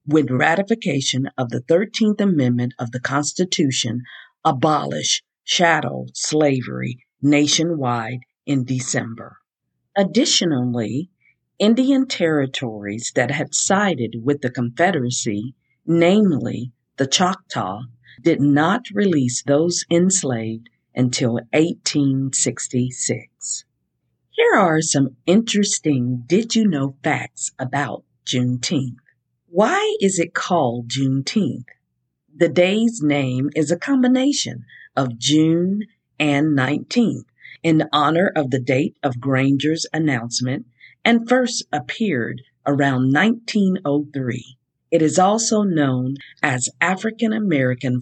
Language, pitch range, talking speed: English, 125-180 Hz, 95 wpm